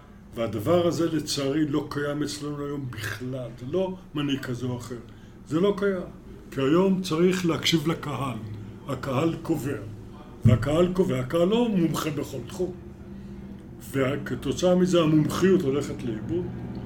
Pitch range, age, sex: 120-165 Hz, 50-69, male